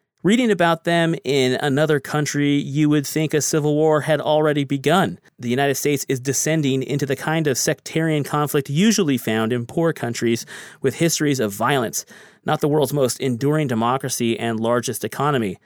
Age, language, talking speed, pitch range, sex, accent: 30-49, English, 170 wpm, 130-165 Hz, male, American